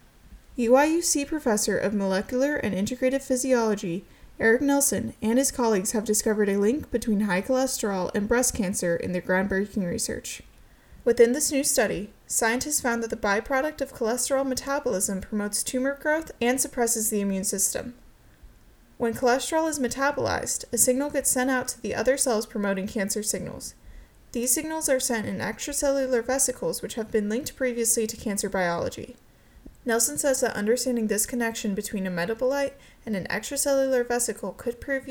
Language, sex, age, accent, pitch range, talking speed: English, female, 10-29, American, 210-260 Hz, 155 wpm